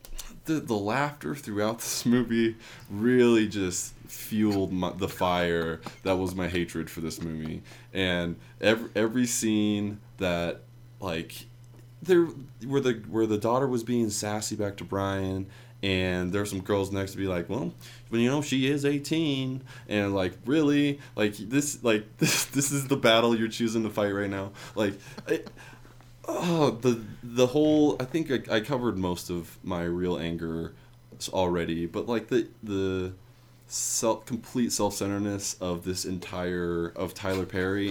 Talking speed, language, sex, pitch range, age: 160 wpm, English, male, 95-125 Hz, 20-39